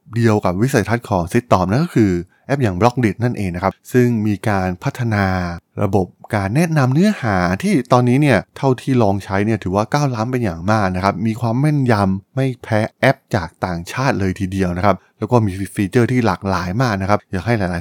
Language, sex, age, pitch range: Thai, male, 20-39, 95-125 Hz